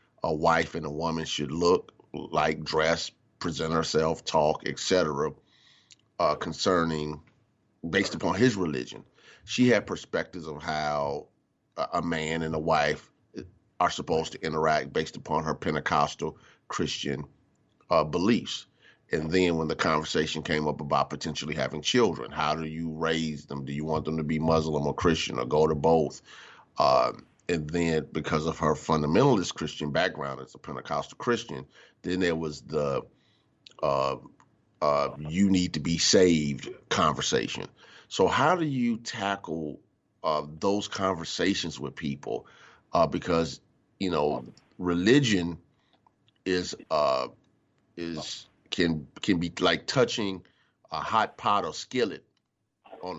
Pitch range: 75-90 Hz